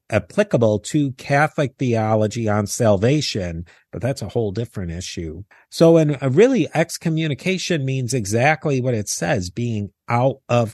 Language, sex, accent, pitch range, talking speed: English, male, American, 110-155 Hz, 135 wpm